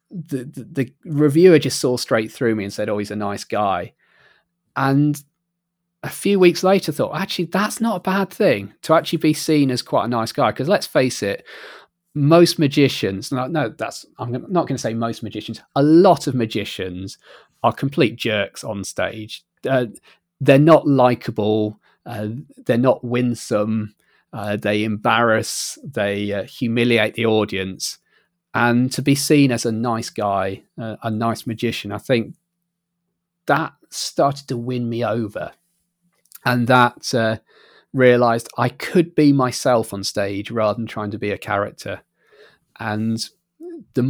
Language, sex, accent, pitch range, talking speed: English, male, British, 110-150 Hz, 160 wpm